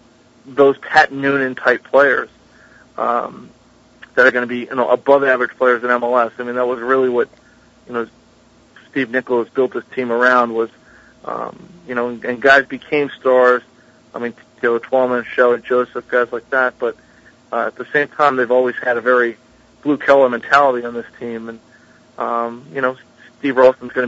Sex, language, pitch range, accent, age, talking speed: male, English, 120-130 Hz, American, 40-59, 185 wpm